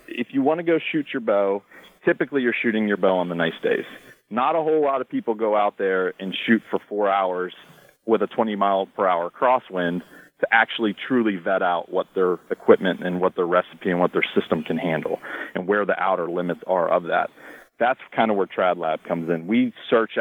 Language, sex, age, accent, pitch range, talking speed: English, male, 40-59, American, 100-125 Hz, 210 wpm